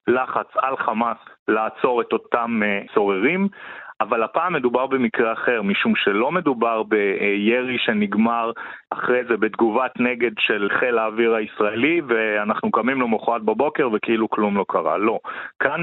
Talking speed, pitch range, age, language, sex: 135 wpm, 105-125 Hz, 40-59, Hebrew, male